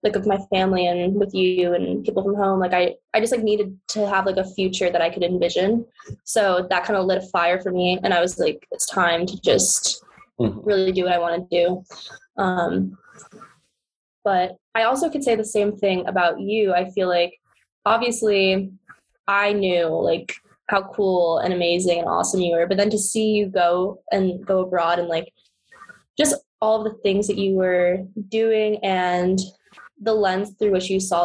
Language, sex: English, female